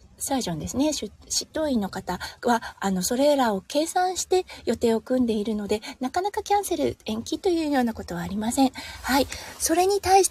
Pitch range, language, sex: 220-310 Hz, Japanese, female